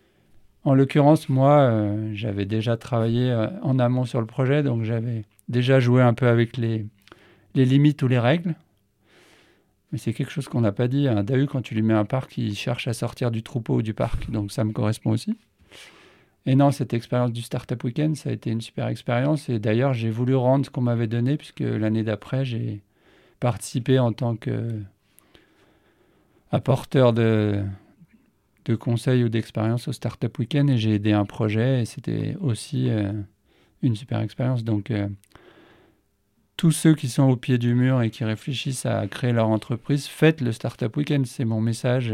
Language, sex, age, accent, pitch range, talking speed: French, male, 50-69, French, 115-135 Hz, 185 wpm